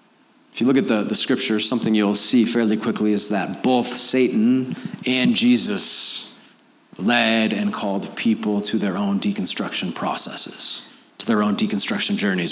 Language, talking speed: English, 155 wpm